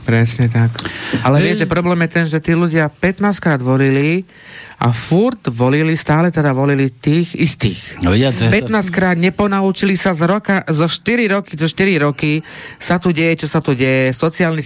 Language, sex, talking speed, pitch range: Slovak, male, 165 wpm, 135-170 Hz